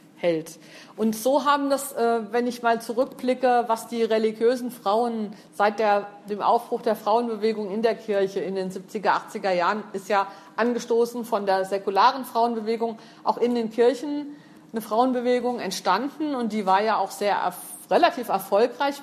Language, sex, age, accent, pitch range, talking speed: German, female, 50-69, German, 210-245 Hz, 155 wpm